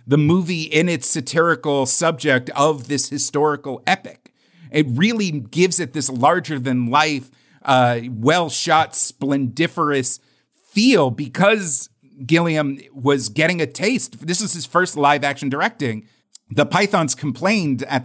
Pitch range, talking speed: 130-170 Hz, 115 wpm